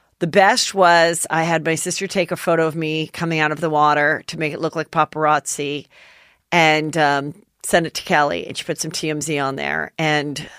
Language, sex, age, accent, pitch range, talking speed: English, female, 40-59, American, 155-190 Hz, 210 wpm